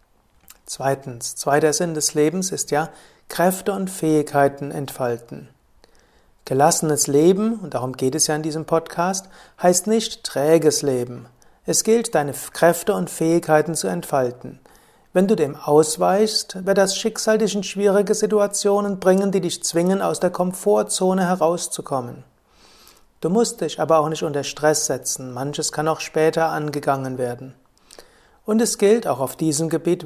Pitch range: 150-190 Hz